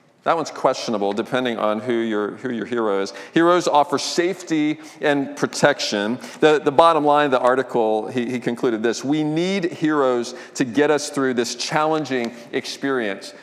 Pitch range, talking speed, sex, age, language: 120-150 Hz, 165 wpm, male, 40-59, English